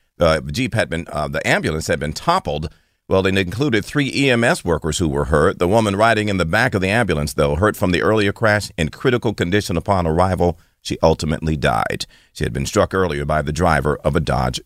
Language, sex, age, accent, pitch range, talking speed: English, male, 40-59, American, 85-115 Hz, 215 wpm